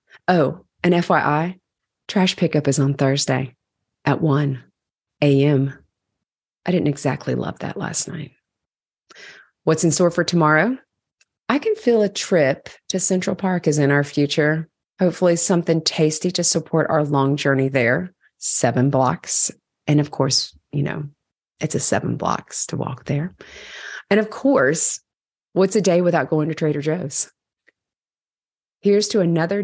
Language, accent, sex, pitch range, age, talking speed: English, American, female, 145-180 Hz, 30-49, 145 wpm